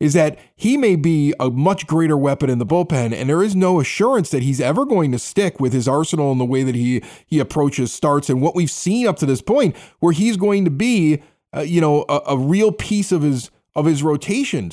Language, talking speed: English, 240 wpm